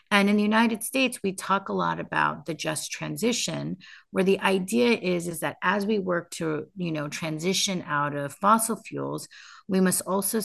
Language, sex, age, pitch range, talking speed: English, female, 30-49, 155-195 Hz, 190 wpm